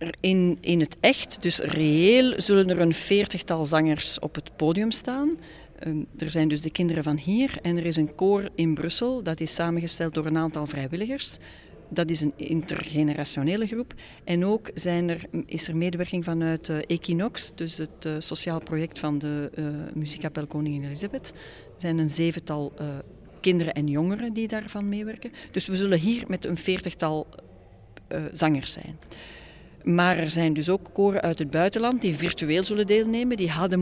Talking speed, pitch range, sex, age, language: 175 wpm, 155-195 Hz, female, 40-59, Dutch